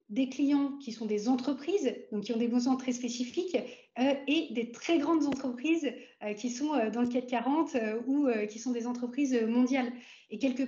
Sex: female